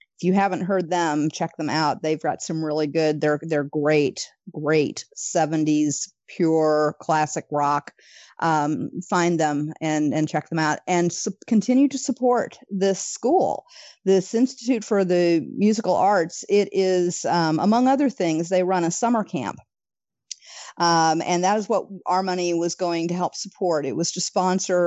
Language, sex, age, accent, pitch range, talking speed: English, female, 40-59, American, 155-185 Hz, 165 wpm